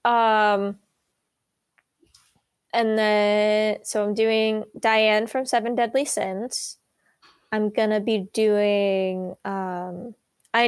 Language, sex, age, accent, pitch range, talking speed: English, female, 20-39, American, 205-240 Hz, 95 wpm